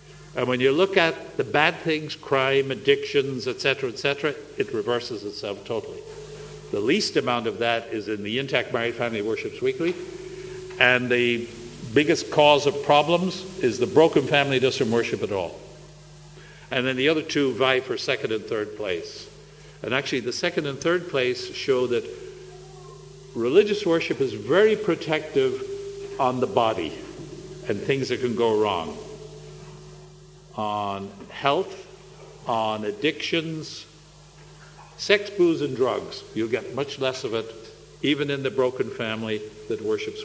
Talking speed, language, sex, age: 150 wpm, English, male, 50-69